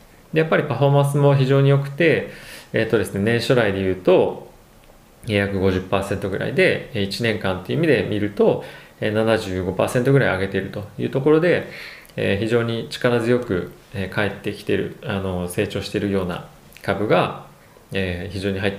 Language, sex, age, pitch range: Japanese, male, 20-39, 95-135 Hz